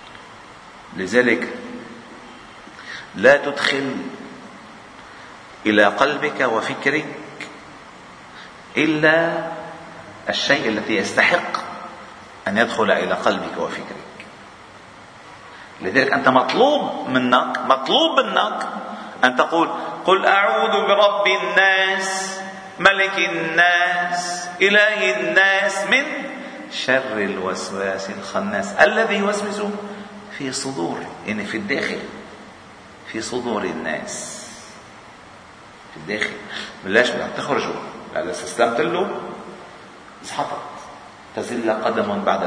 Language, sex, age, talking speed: Arabic, male, 50-69, 80 wpm